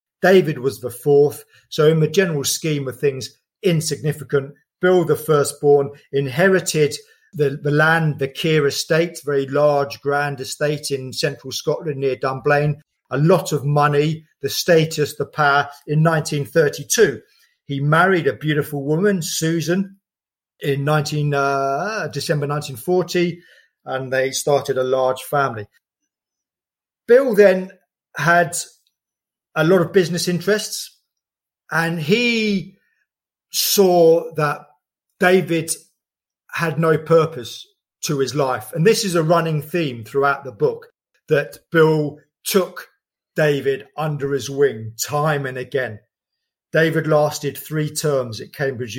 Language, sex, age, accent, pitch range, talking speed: English, male, 40-59, British, 140-170 Hz, 125 wpm